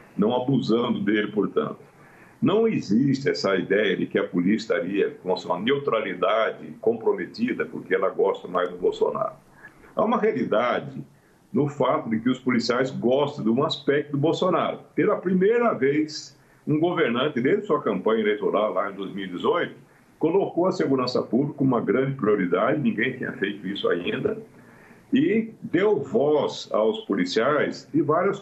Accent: Brazilian